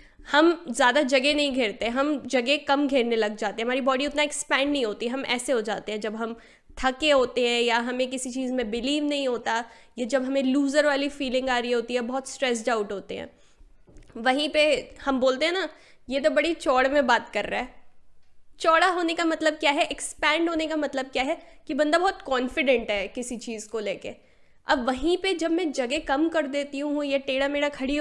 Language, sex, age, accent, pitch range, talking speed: Hindi, female, 10-29, native, 255-310 Hz, 215 wpm